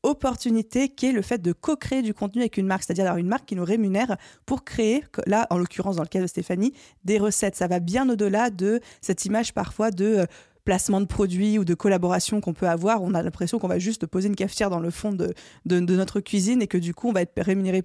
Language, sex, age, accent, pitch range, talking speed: French, female, 20-39, French, 185-230 Hz, 245 wpm